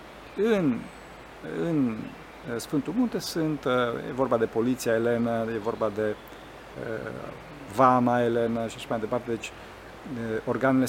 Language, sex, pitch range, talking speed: Romanian, male, 115-165 Hz, 125 wpm